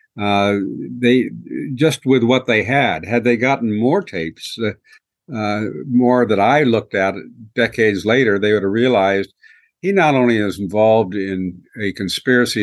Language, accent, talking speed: English, American, 155 wpm